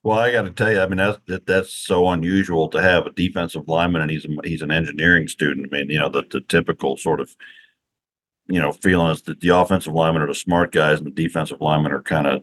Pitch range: 85-105 Hz